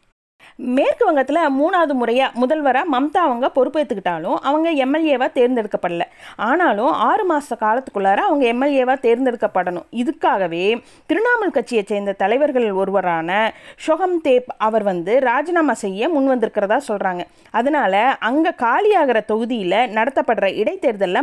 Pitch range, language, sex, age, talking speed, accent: 220-305 Hz, Tamil, female, 20-39, 105 wpm, native